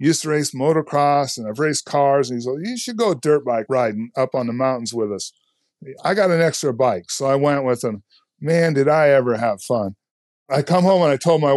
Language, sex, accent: English, male, American